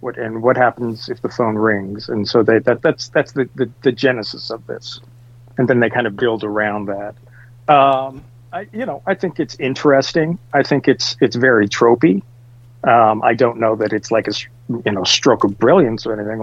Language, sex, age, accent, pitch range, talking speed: English, male, 40-59, American, 110-125 Hz, 210 wpm